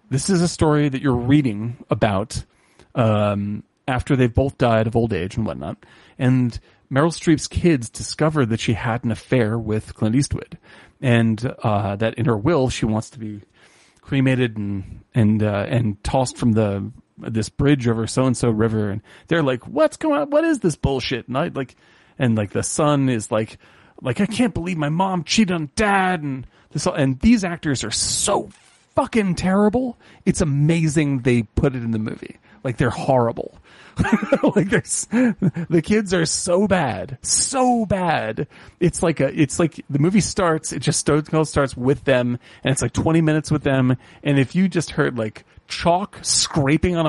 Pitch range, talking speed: 115-165 Hz, 180 wpm